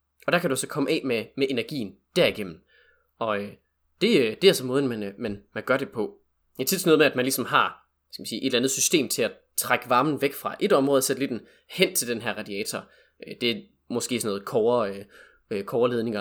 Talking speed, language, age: 230 wpm, Danish, 20-39